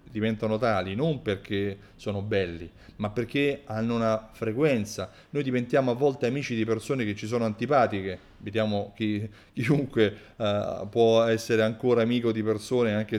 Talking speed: 140 wpm